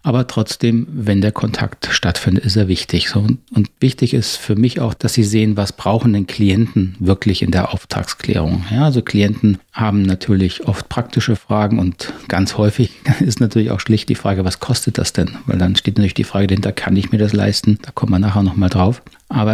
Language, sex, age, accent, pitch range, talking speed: German, male, 40-59, German, 95-115 Hz, 205 wpm